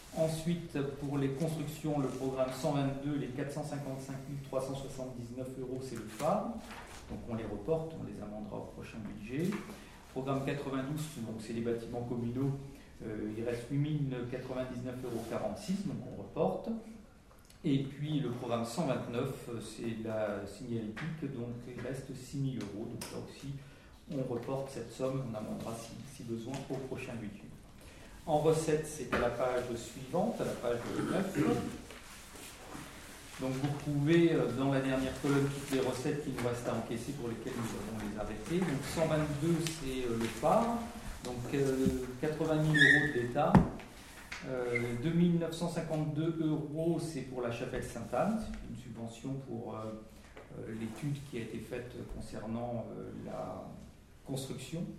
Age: 40-59